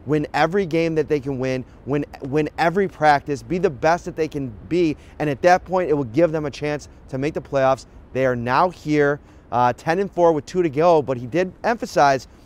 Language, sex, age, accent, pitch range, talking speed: English, male, 30-49, American, 135-175 Hz, 225 wpm